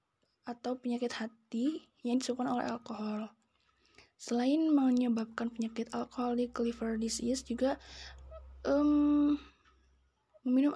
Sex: female